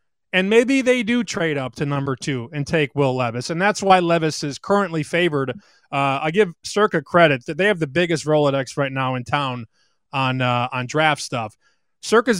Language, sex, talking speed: English, male, 200 wpm